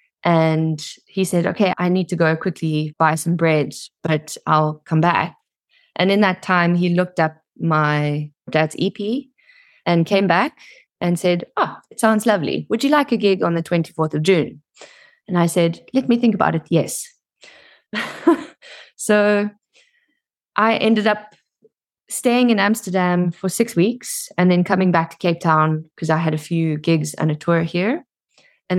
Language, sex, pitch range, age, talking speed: English, female, 165-210 Hz, 20-39, 170 wpm